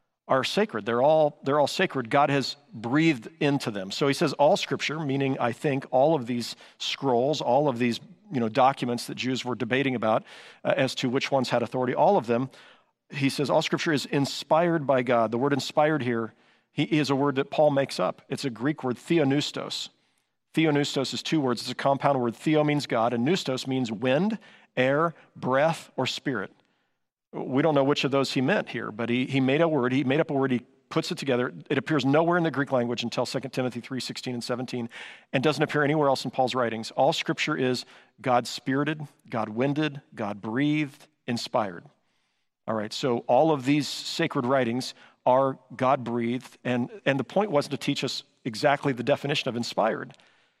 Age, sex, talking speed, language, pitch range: 50-69, male, 195 wpm, English, 125-150 Hz